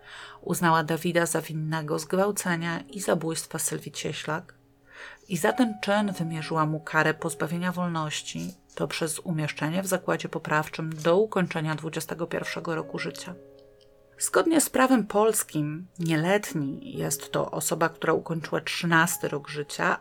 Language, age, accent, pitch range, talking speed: Polish, 30-49, native, 155-180 Hz, 125 wpm